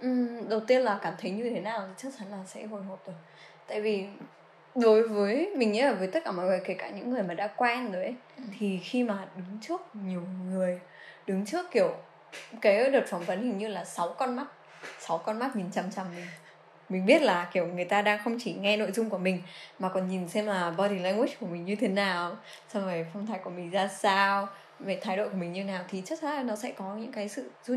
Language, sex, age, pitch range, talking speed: Vietnamese, female, 10-29, 190-250 Hz, 250 wpm